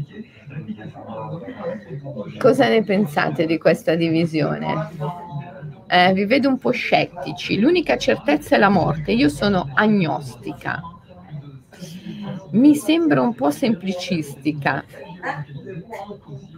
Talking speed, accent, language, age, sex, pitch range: 90 wpm, native, Italian, 30-49, female, 160-230 Hz